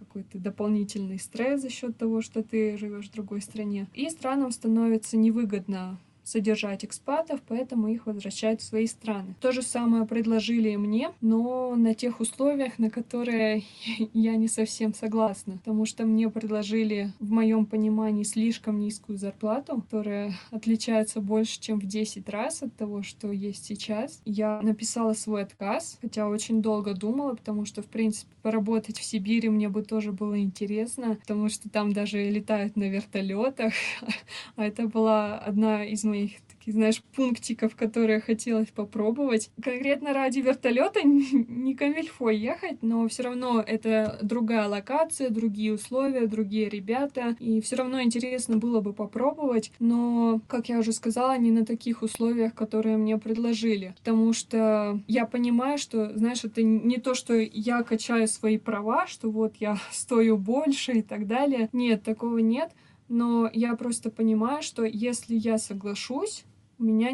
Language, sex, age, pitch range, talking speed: Russian, female, 20-39, 215-235 Hz, 155 wpm